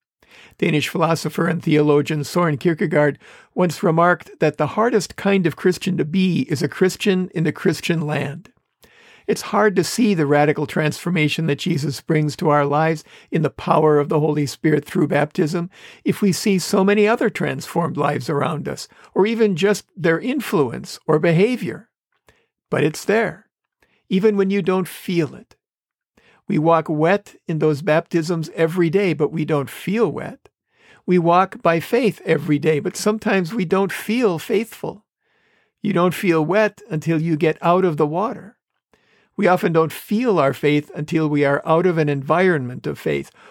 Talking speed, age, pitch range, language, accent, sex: 170 wpm, 50-69, 155-190 Hz, English, American, male